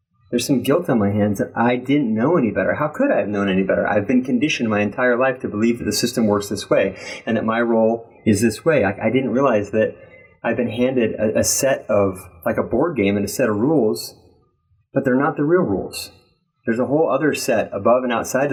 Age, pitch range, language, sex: 30-49, 105-130 Hz, English, male